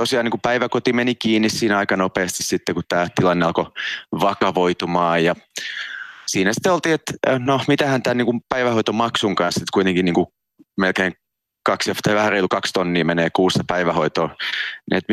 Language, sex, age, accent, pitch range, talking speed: Finnish, male, 30-49, native, 90-125 Hz, 155 wpm